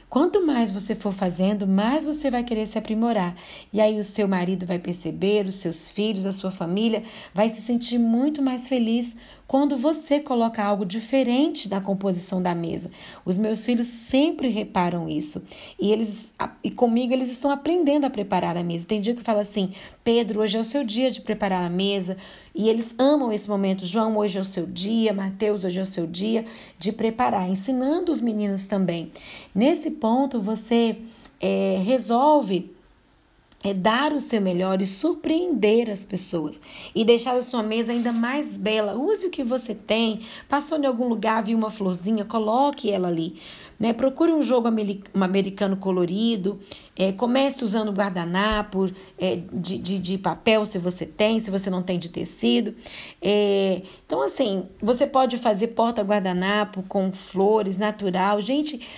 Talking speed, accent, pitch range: 165 wpm, Brazilian, 190-240 Hz